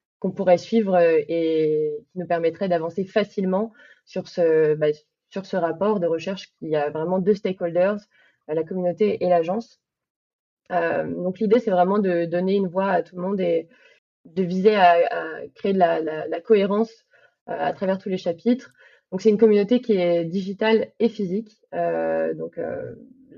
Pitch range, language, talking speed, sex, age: 170-205 Hz, French, 175 wpm, female, 20-39